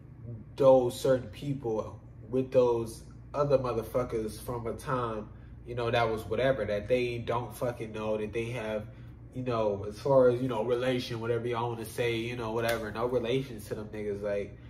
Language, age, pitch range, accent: English, 20-39, 110-130 Hz, American